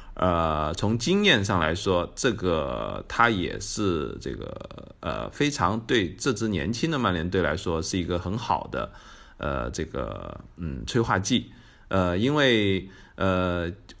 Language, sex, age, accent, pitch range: Chinese, male, 20-39, native, 85-110 Hz